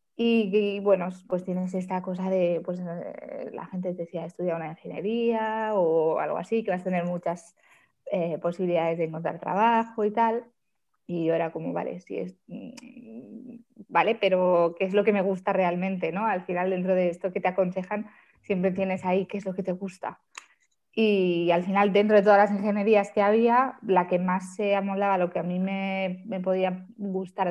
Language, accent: Spanish, Spanish